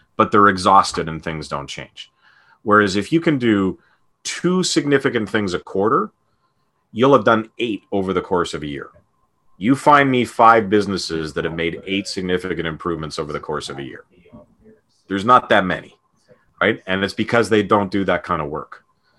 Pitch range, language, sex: 90-115 Hz, English, male